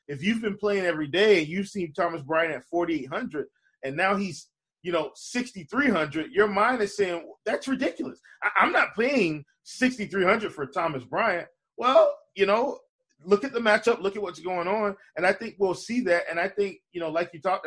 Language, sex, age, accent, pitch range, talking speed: English, male, 20-39, American, 155-200 Hz, 195 wpm